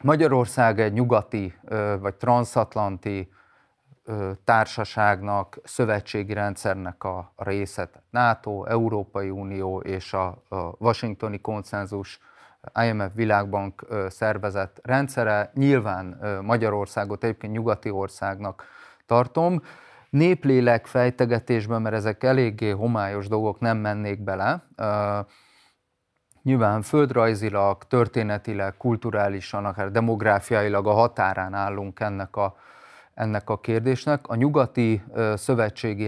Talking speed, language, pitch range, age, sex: 90 wpm, Hungarian, 100-120 Hz, 30-49, male